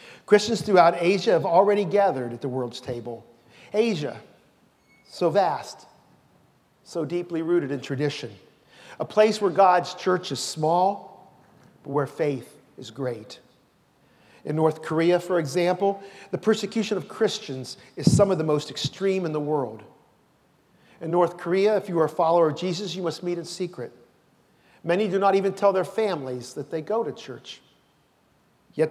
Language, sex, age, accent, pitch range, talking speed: English, male, 40-59, American, 145-195 Hz, 160 wpm